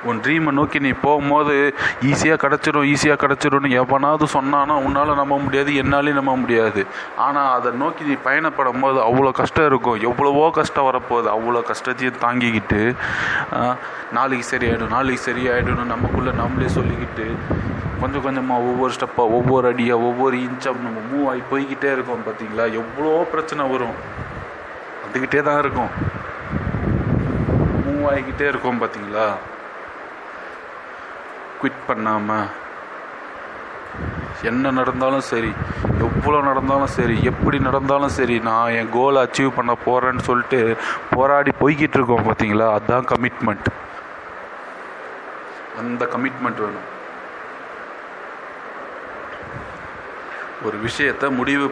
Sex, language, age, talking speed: male, Tamil, 30-49, 80 wpm